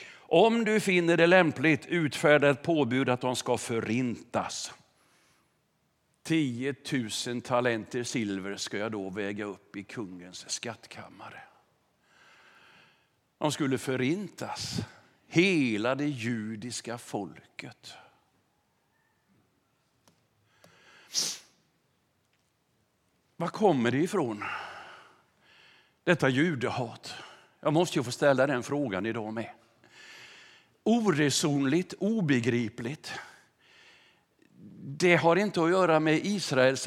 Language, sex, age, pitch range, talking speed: English, male, 50-69, 125-165 Hz, 90 wpm